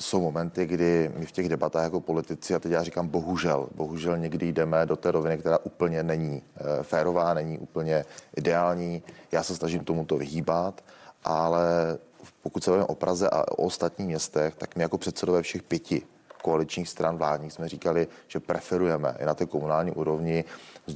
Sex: male